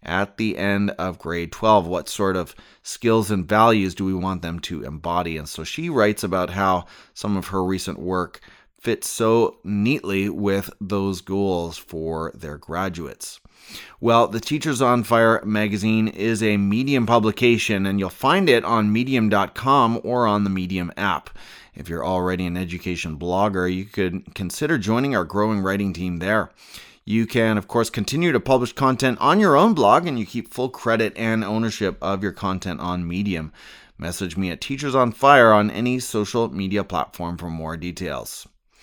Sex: male